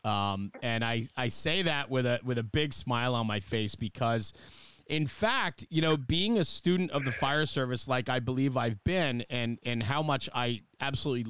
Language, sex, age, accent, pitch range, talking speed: English, male, 30-49, American, 120-145 Hz, 200 wpm